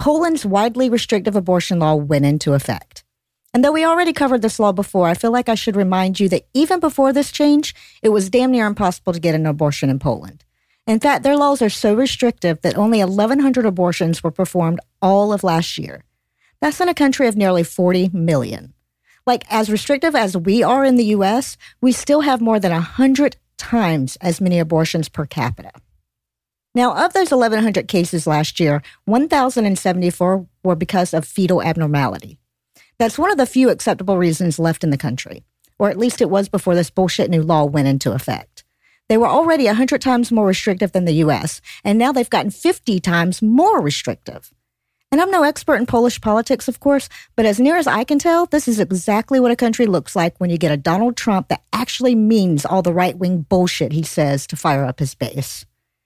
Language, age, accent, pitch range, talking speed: English, 50-69, American, 165-245 Hz, 195 wpm